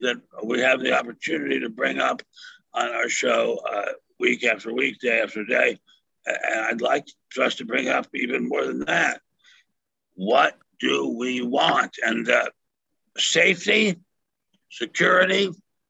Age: 60-79